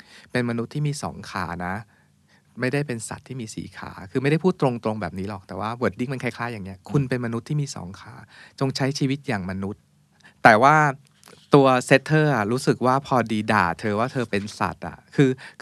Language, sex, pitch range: Thai, male, 110-140 Hz